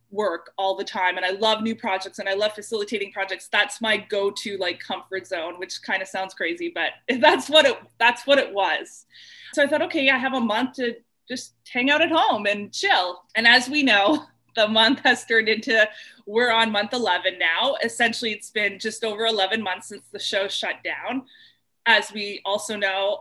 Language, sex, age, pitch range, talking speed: English, female, 20-39, 195-245 Hz, 205 wpm